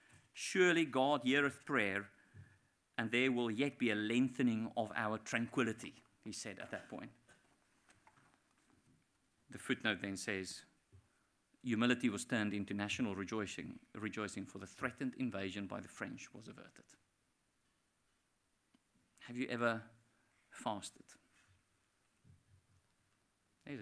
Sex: male